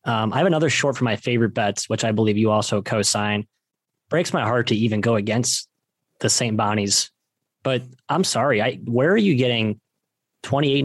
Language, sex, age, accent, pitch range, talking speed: English, male, 20-39, American, 115-135 Hz, 190 wpm